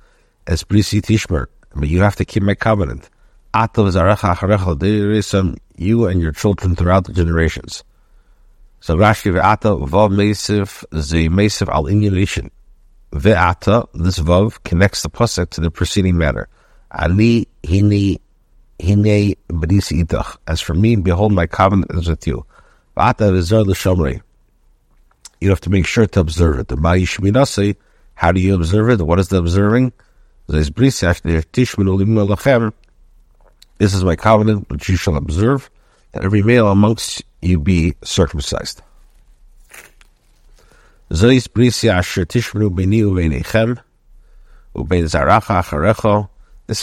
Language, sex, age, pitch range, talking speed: English, male, 60-79, 85-105 Hz, 85 wpm